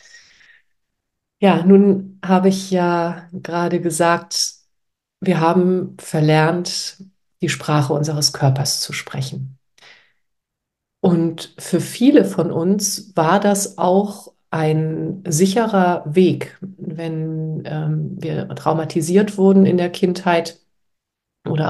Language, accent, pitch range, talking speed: German, German, 150-180 Hz, 100 wpm